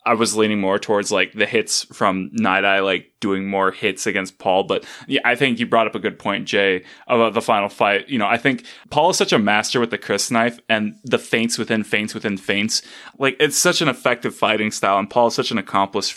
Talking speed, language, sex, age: 240 wpm, English, male, 20-39